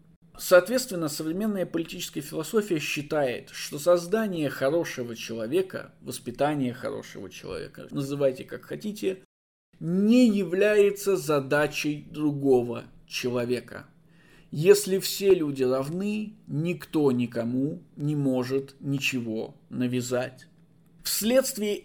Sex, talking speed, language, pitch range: male, 85 wpm, Russian, 135-175 Hz